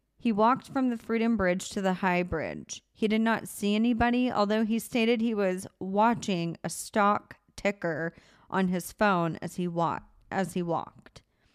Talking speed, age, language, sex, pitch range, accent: 170 wpm, 30-49, English, female, 180-220 Hz, American